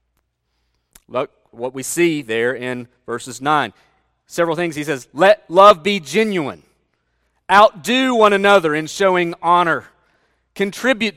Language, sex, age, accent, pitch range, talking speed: English, male, 40-59, American, 155-215 Hz, 125 wpm